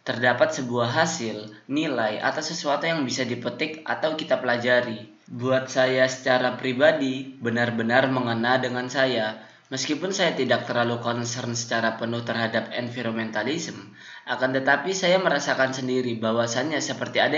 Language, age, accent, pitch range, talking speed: Indonesian, 20-39, native, 115-135 Hz, 130 wpm